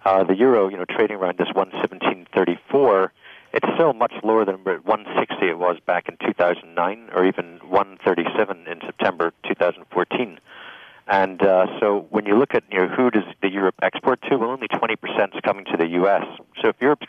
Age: 40-59